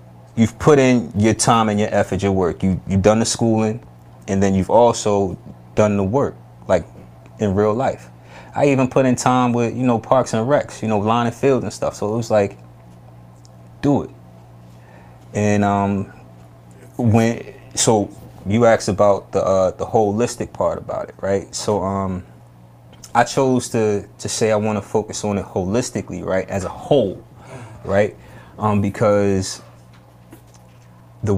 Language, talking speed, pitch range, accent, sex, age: English, 165 wpm, 90-115 Hz, American, male, 20-39